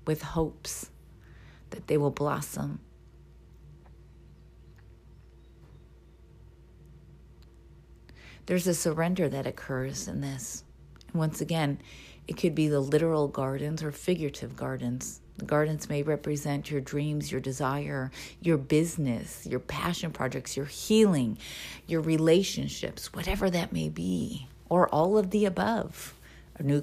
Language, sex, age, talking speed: English, female, 40-59, 120 wpm